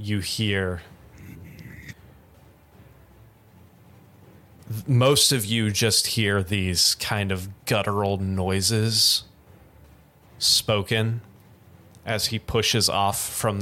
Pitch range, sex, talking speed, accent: 95-110 Hz, male, 80 wpm, American